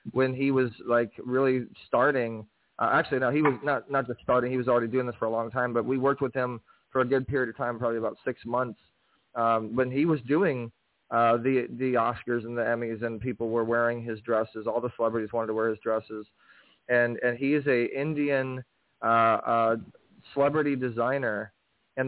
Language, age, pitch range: English, 20-39, 115-130 Hz